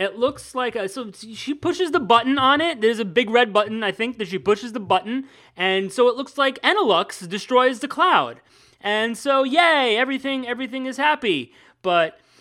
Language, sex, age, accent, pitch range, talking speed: English, male, 30-49, American, 160-250 Hz, 195 wpm